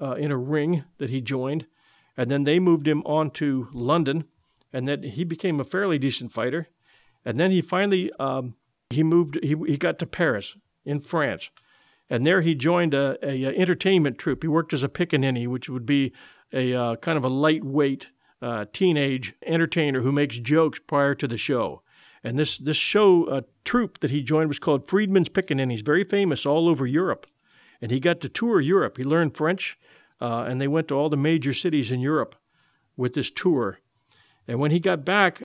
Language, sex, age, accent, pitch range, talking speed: English, male, 50-69, American, 135-165 Hz, 200 wpm